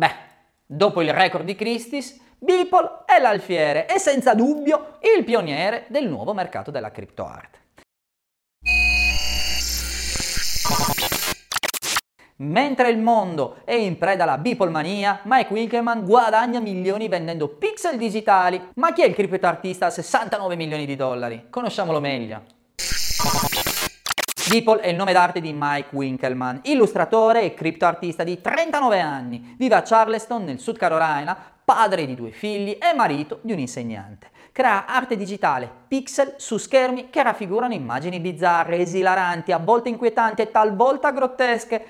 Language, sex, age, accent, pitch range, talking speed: Italian, male, 30-49, native, 175-265 Hz, 135 wpm